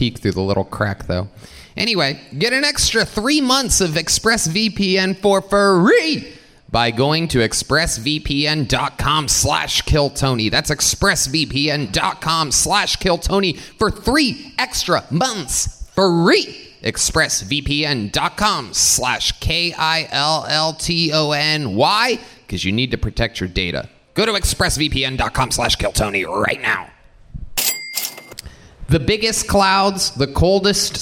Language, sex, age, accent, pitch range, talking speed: English, male, 30-49, American, 130-185 Hz, 105 wpm